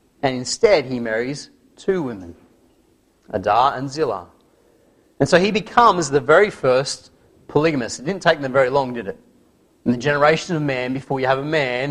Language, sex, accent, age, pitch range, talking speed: English, male, Australian, 30-49, 130-170 Hz, 175 wpm